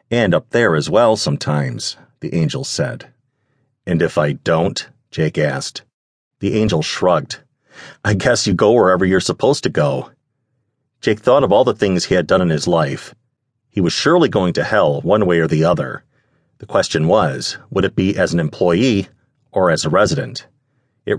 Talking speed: 180 wpm